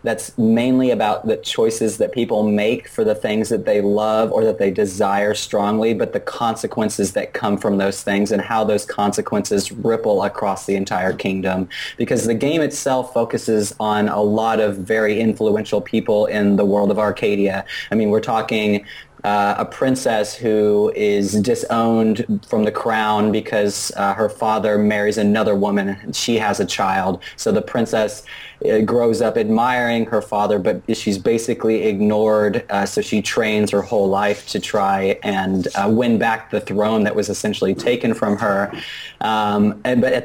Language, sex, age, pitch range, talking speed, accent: English, male, 20-39, 105-115 Hz, 170 wpm, American